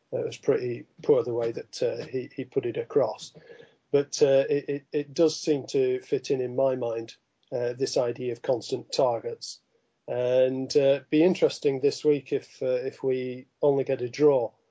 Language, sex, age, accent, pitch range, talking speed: English, male, 40-59, British, 135-175 Hz, 195 wpm